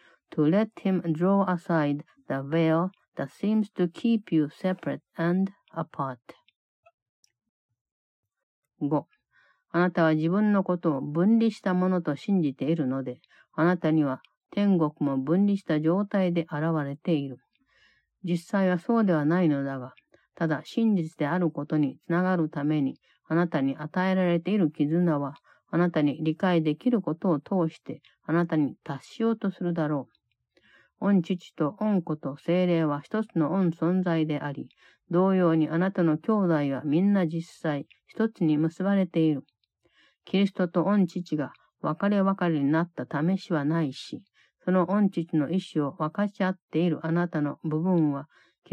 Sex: female